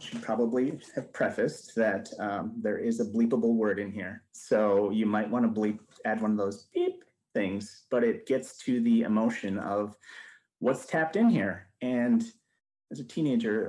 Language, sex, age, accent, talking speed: English, male, 30-49, American, 175 wpm